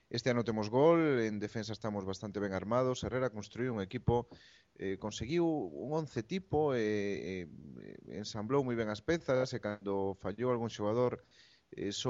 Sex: male